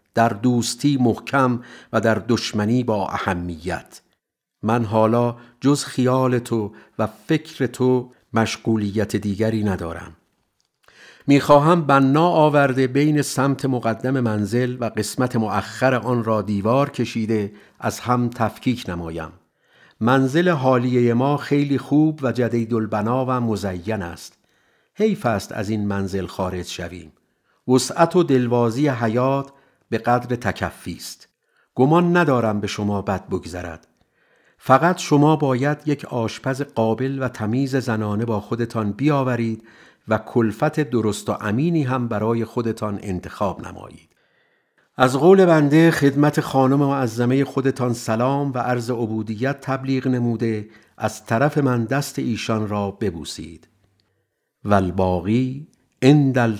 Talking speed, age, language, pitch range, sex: 120 wpm, 50-69, Persian, 105-135 Hz, male